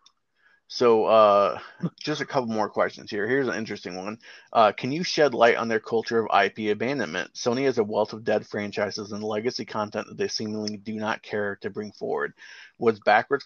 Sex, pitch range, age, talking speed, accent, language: male, 105-120 Hz, 30-49, 195 wpm, American, English